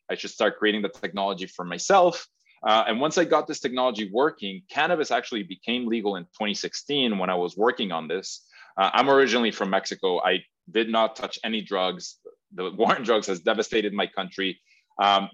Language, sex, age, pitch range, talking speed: English, male, 20-39, 95-120 Hz, 190 wpm